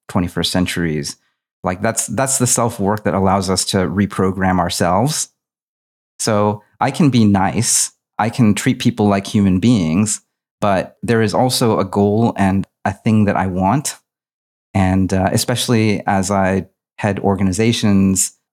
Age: 30-49